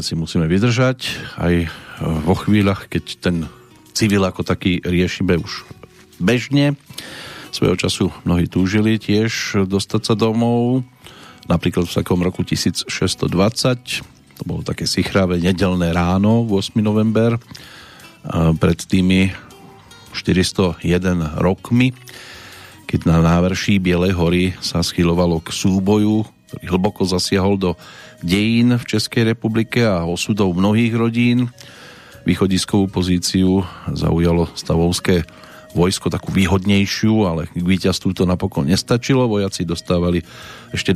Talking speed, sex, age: 110 wpm, male, 40-59